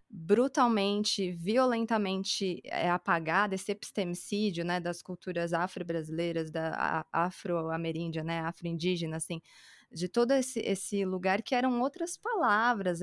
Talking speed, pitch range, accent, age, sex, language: 115 wpm, 170-220 Hz, Brazilian, 20-39, female, Portuguese